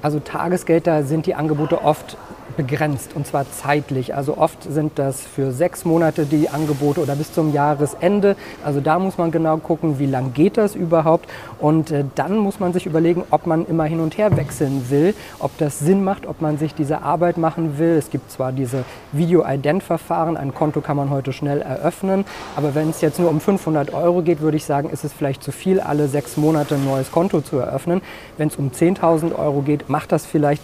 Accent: German